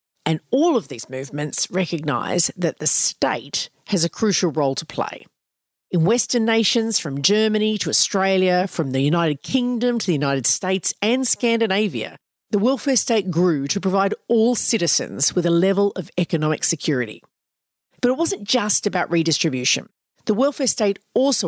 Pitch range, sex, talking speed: 160-225 Hz, female, 155 wpm